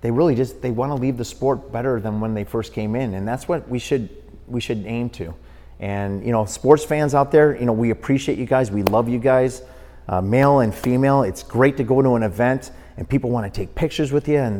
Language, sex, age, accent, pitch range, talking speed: English, male, 30-49, American, 110-165 Hz, 245 wpm